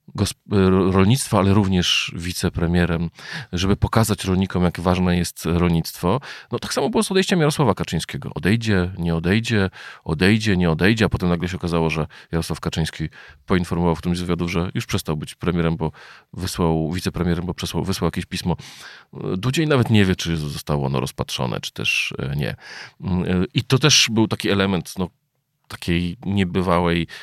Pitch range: 85-110 Hz